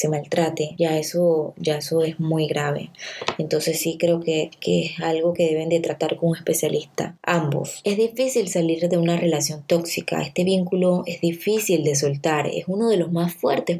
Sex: female